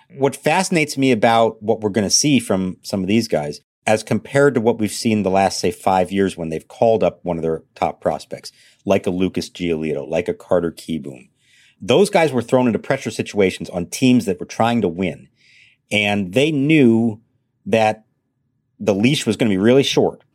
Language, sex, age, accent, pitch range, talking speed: English, male, 50-69, American, 100-130 Hz, 200 wpm